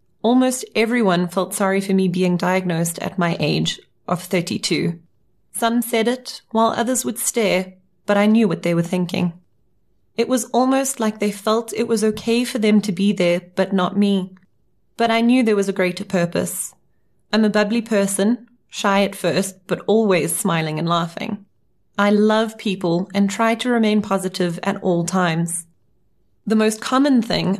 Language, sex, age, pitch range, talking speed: English, female, 30-49, 185-220 Hz, 170 wpm